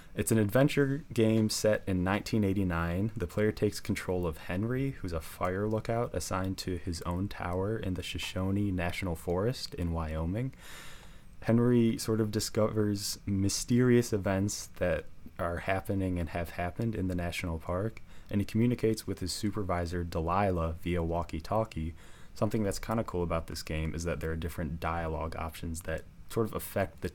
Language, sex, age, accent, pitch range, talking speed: English, male, 20-39, American, 85-110 Hz, 165 wpm